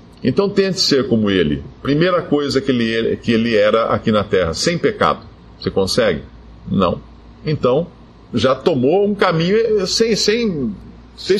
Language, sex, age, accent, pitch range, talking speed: Portuguese, male, 50-69, Brazilian, 125-205 Hz, 145 wpm